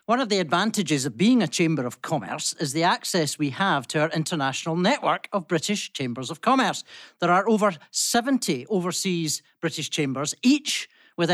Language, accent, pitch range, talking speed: English, British, 150-205 Hz, 175 wpm